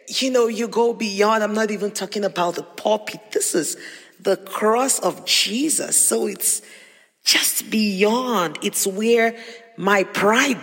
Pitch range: 200-245 Hz